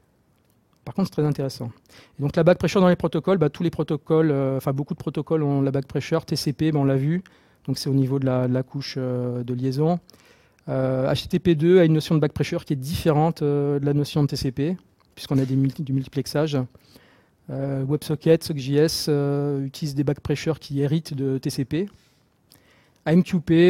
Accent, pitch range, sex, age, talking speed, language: French, 135-160 Hz, male, 40-59, 200 wpm, English